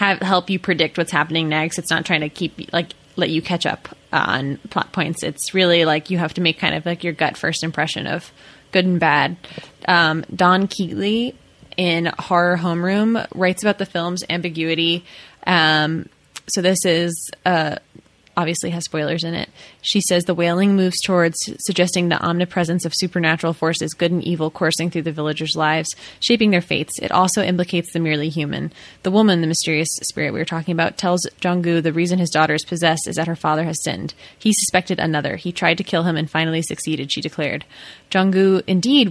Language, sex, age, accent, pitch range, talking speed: English, female, 20-39, American, 160-185 Hz, 195 wpm